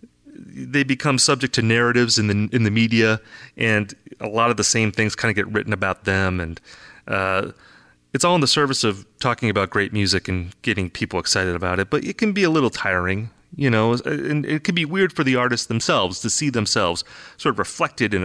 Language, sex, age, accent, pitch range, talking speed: English, male, 30-49, American, 95-140 Hz, 215 wpm